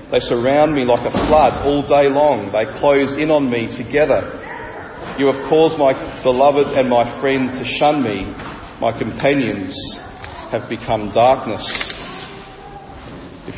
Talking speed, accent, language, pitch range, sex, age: 140 wpm, Australian, English, 125-155 Hz, male, 40-59